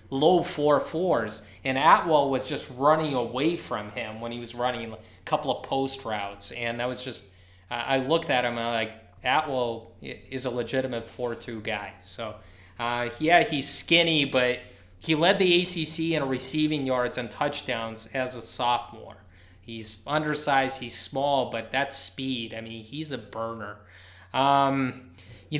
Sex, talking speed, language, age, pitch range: male, 165 wpm, English, 20-39, 115-160 Hz